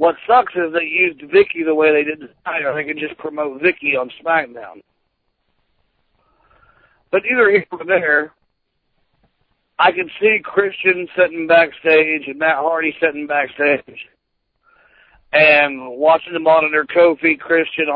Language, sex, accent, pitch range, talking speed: English, male, American, 150-180 Hz, 140 wpm